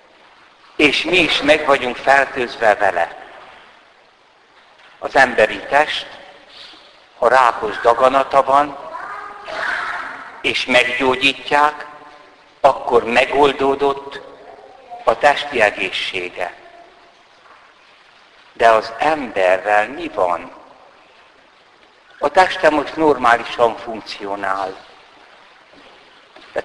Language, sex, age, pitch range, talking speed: Hungarian, male, 60-79, 125-185 Hz, 70 wpm